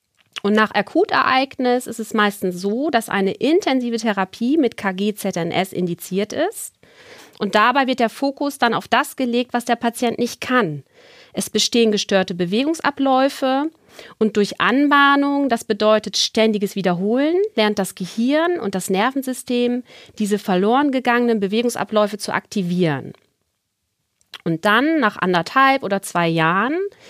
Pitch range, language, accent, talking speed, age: 195-265 Hz, German, German, 135 wpm, 40-59